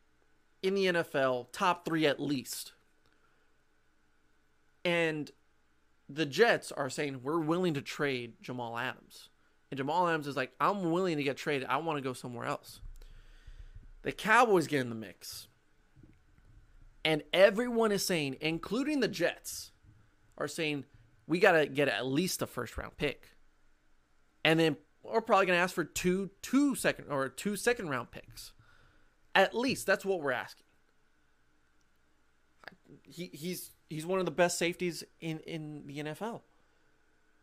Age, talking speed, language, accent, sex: 30-49, 145 wpm, English, American, male